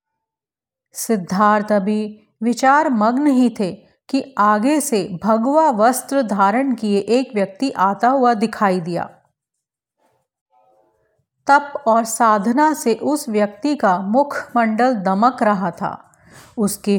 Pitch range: 205-270 Hz